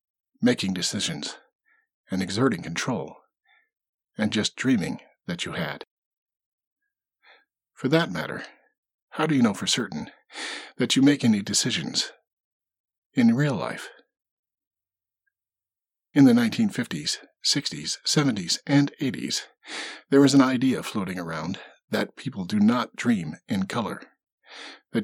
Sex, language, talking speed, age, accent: male, English, 115 wpm, 50-69, American